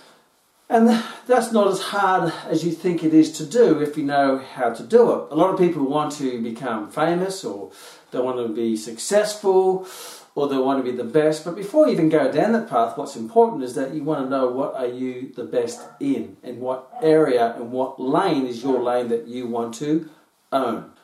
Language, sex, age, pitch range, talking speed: English, male, 40-59, 135-195 Hz, 215 wpm